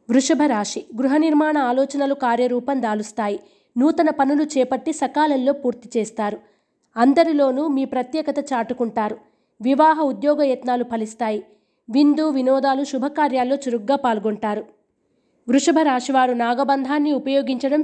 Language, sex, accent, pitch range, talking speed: Telugu, female, native, 240-285 Hz, 100 wpm